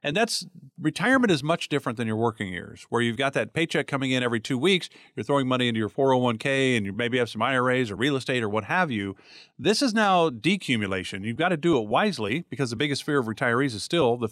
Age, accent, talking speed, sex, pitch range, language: 50-69, American, 245 wpm, male, 115-150 Hz, English